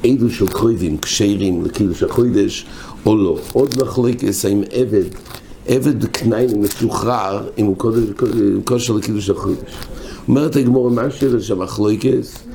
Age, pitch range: 60-79, 100-125 Hz